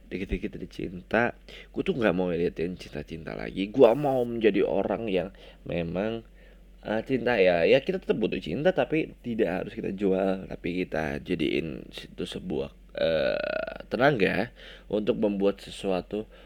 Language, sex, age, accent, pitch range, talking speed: Indonesian, male, 20-39, native, 90-120 Hz, 145 wpm